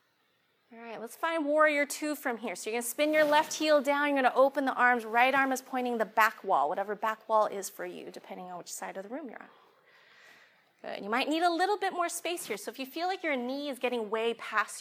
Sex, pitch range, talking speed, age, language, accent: female, 205-285 Hz, 270 wpm, 30-49, English, American